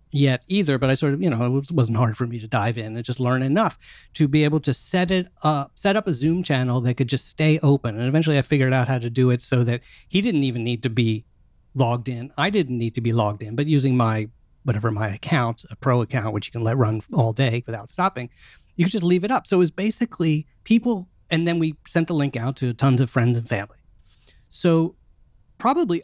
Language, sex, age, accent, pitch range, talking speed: English, male, 40-59, American, 120-155 Hz, 245 wpm